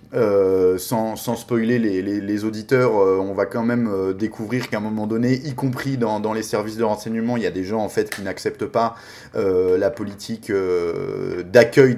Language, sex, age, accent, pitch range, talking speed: French, male, 20-39, French, 105-140 Hz, 200 wpm